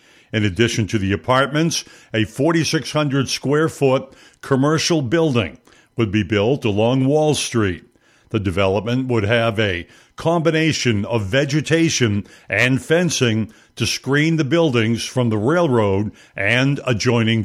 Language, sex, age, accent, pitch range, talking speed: English, male, 60-79, American, 115-150 Hz, 125 wpm